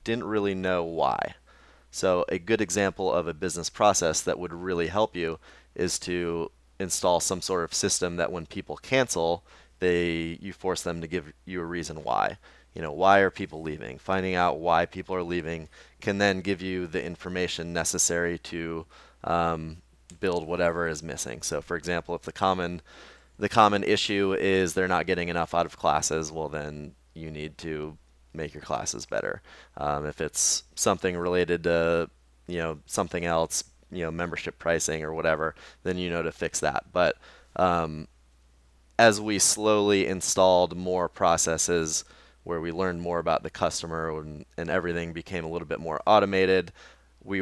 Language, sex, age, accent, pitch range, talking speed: English, male, 30-49, American, 80-95 Hz, 170 wpm